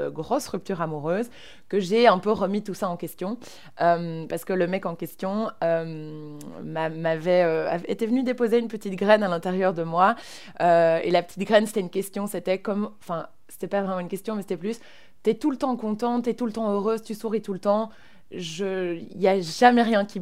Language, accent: French, French